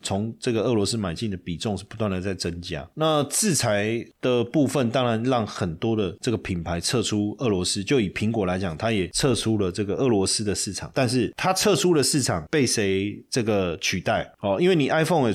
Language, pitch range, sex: Chinese, 95-125 Hz, male